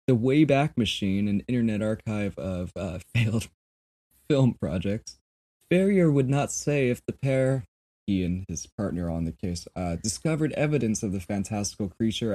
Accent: American